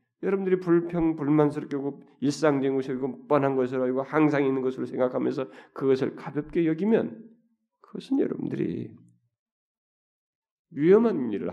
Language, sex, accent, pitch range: Korean, male, native, 165-240 Hz